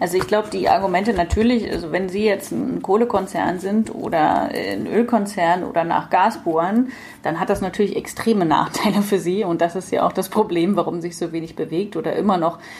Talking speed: 200 wpm